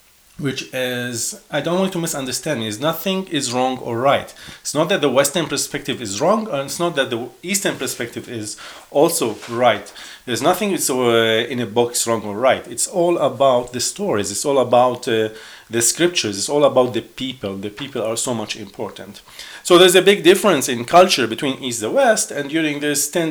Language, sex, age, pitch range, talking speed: English, male, 40-59, 115-155 Hz, 195 wpm